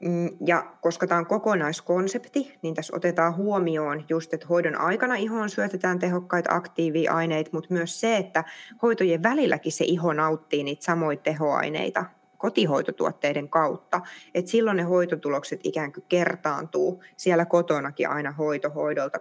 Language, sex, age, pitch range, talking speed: Finnish, female, 20-39, 160-190 Hz, 135 wpm